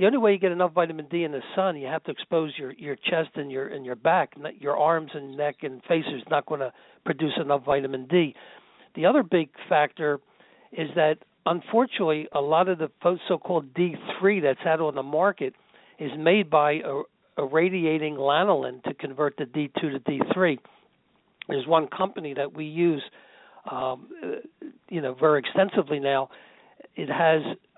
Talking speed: 175 wpm